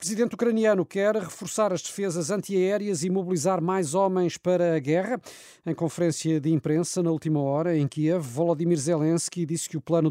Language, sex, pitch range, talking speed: Portuguese, male, 140-175 Hz, 170 wpm